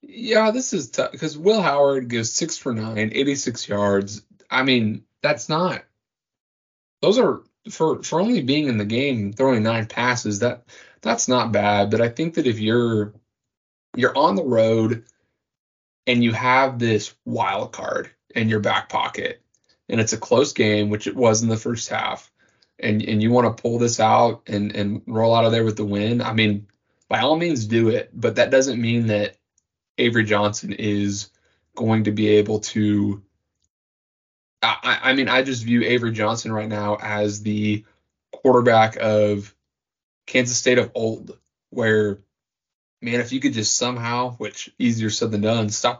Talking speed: 175 wpm